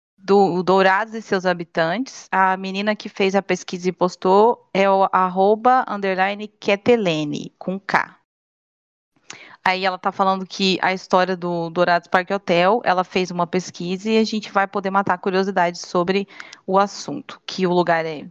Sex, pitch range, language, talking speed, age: female, 180-230 Hz, Portuguese, 165 wpm, 30-49